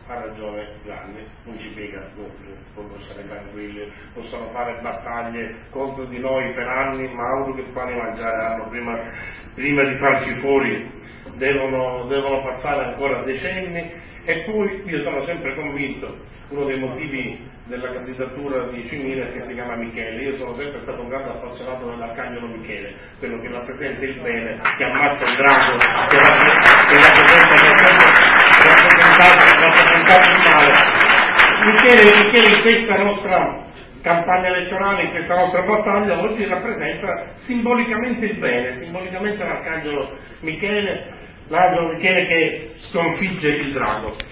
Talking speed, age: 130 wpm, 40-59